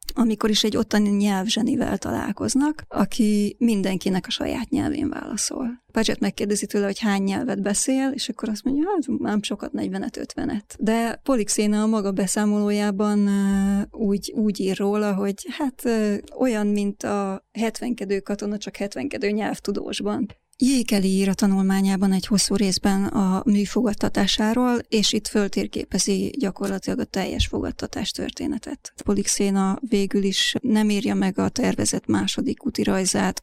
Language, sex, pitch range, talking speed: Hungarian, female, 195-225 Hz, 130 wpm